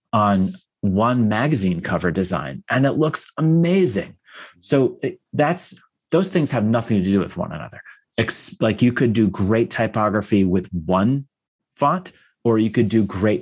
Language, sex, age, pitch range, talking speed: English, male, 30-49, 95-120 Hz, 155 wpm